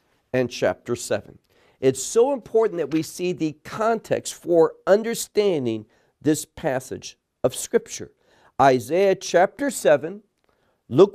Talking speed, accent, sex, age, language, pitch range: 115 wpm, American, male, 50-69, English, 125-210 Hz